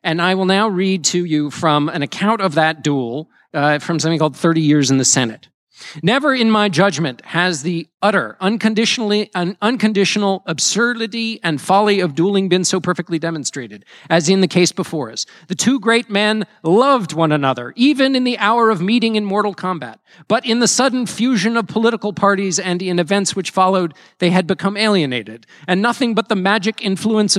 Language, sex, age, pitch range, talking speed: English, male, 40-59, 175-225 Hz, 190 wpm